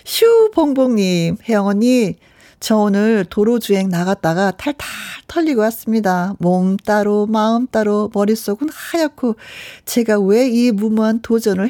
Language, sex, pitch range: Korean, female, 185-255 Hz